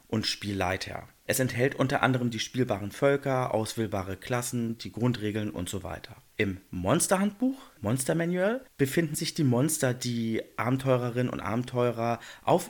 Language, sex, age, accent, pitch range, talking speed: German, male, 40-59, German, 110-140 Hz, 135 wpm